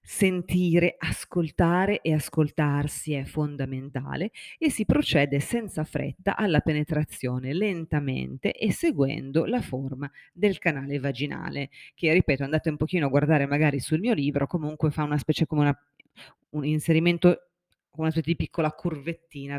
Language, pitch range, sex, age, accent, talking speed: Italian, 140-180 Hz, female, 30-49, native, 135 wpm